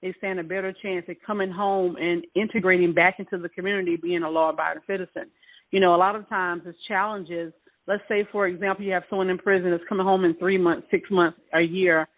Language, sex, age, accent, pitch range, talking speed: English, female, 40-59, American, 180-225 Hz, 220 wpm